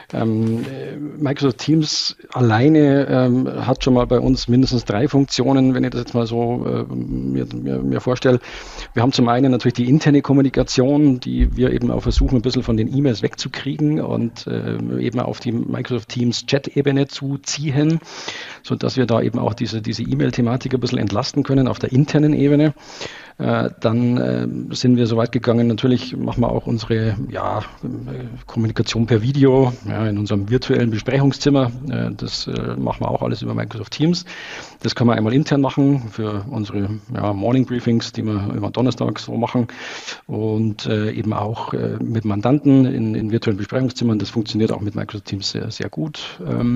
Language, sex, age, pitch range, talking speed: German, male, 50-69, 110-135 Hz, 160 wpm